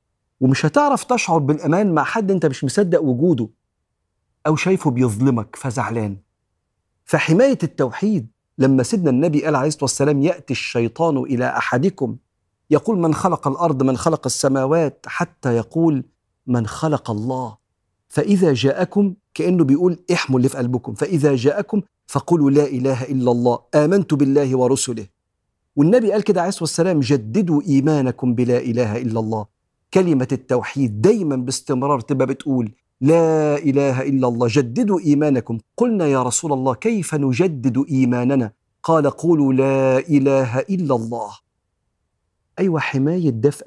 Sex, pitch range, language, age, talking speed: male, 125-160 Hz, Arabic, 50-69, 135 wpm